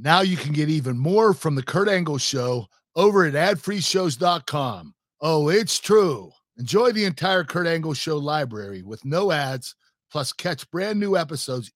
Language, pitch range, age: English, 135-185 Hz, 50-69